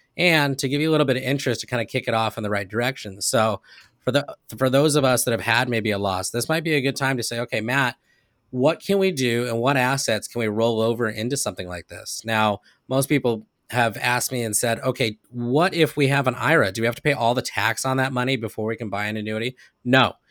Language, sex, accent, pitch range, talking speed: English, male, American, 110-135 Hz, 265 wpm